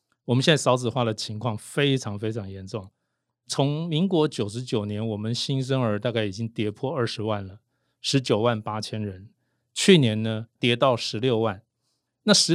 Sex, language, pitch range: male, Chinese, 110-135 Hz